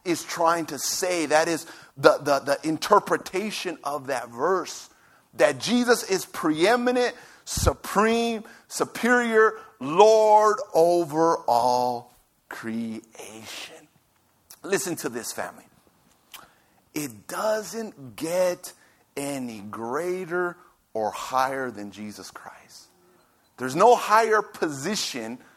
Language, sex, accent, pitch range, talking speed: English, male, American, 155-245 Hz, 95 wpm